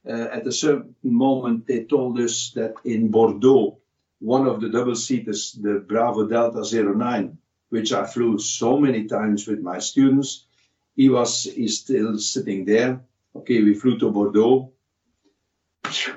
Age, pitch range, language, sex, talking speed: 60-79, 105-125 Hz, English, male, 140 wpm